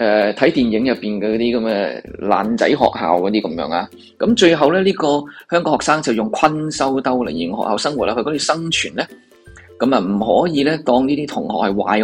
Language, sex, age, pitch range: Chinese, male, 20-39, 115-160 Hz